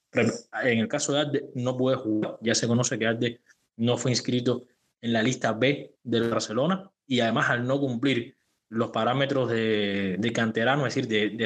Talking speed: 190 wpm